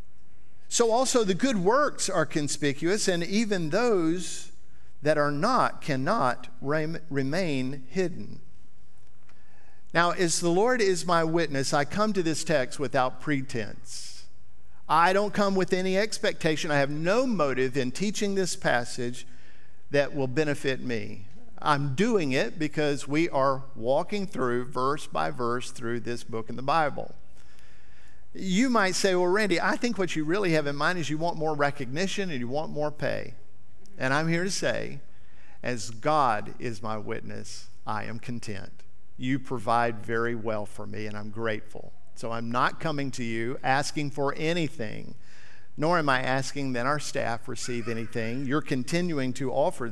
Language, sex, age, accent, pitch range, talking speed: English, male, 50-69, American, 120-170 Hz, 160 wpm